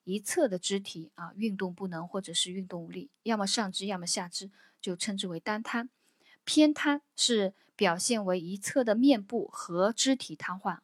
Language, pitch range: Chinese, 185-245 Hz